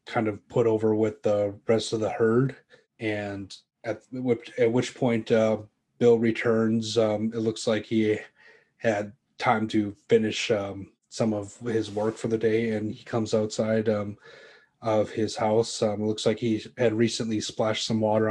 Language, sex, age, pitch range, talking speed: English, male, 30-49, 105-115 Hz, 175 wpm